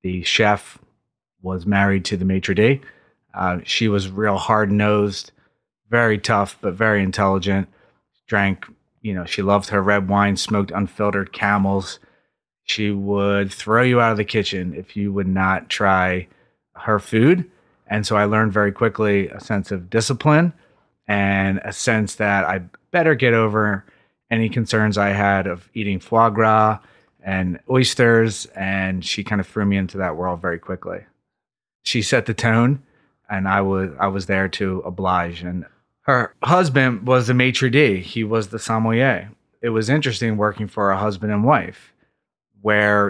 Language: English